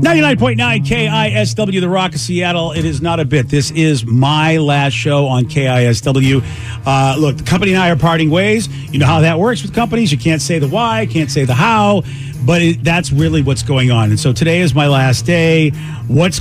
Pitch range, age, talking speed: 130-170 Hz, 40-59, 210 wpm